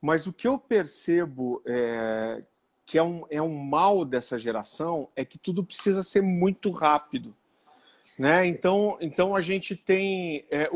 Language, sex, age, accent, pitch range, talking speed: Gujarati, male, 50-69, Brazilian, 170-235 Hz, 155 wpm